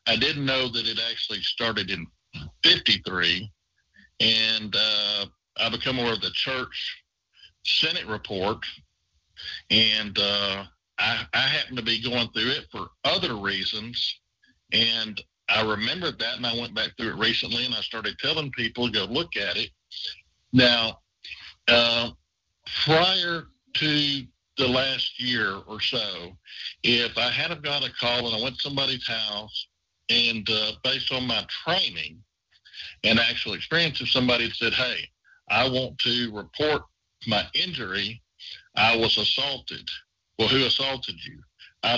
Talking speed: 145 wpm